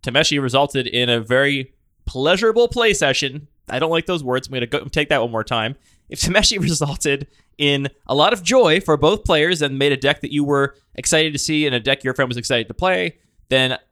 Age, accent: 20-39, American